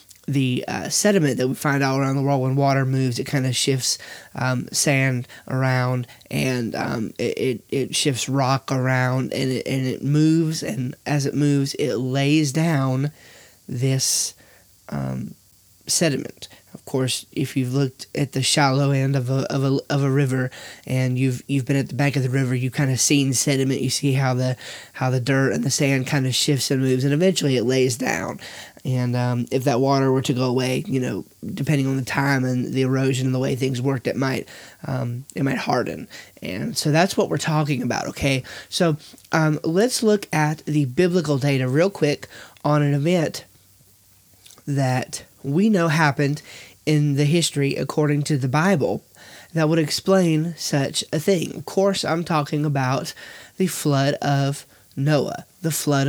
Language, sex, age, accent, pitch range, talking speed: English, male, 20-39, American, 130-150 Hz, 180 wpm